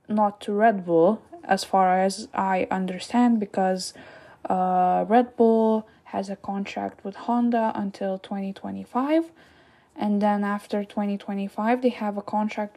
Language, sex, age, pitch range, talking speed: English, female, 10-29, 195-230 Hz, 130 wpm